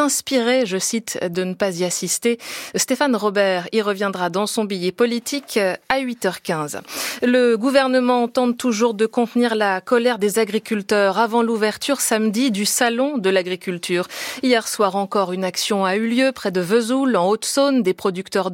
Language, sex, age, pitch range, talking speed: French, female, 30-49, 195-245 Hz, 160 wpm